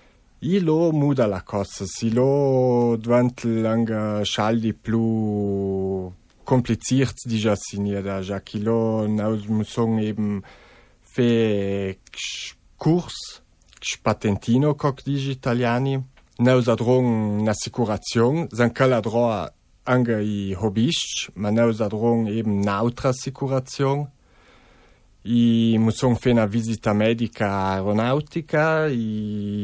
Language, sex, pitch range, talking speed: Italian, male, 105-135 Hz, 65 wpm